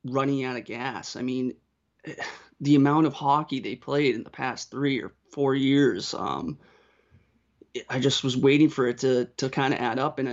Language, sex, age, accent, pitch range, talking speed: English, male, 30-49, American, 130-140 Hz, 190 wpm